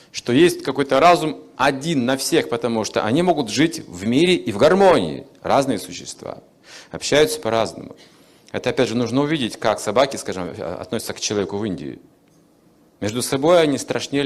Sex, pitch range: male, 110-150 Hz